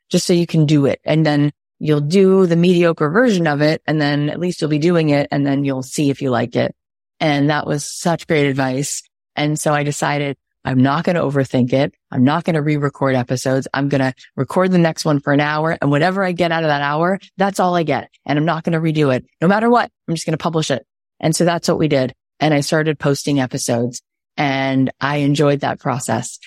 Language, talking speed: English, 245 wpm